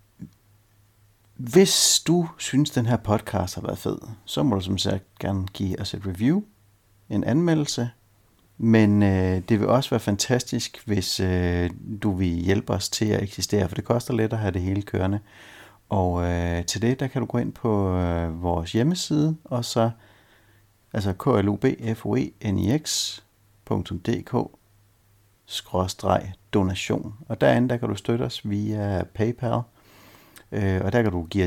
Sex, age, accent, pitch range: male, 60-79, native, 95-115 Hz